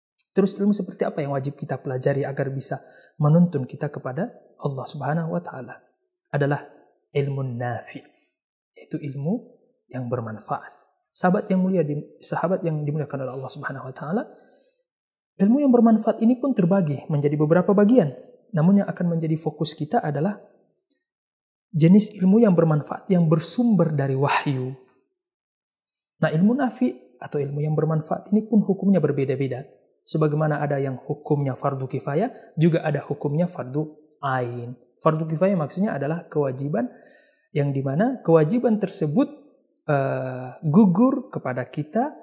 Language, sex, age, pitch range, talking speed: Indonesian, male, 30-49, 140-200 Hz, 135 wpm